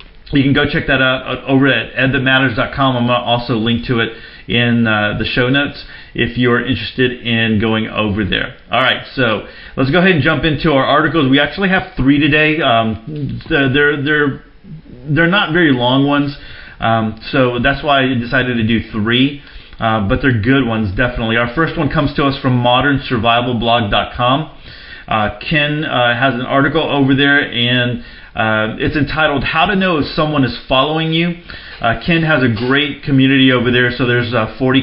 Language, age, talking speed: English, 40-59, 185 wpm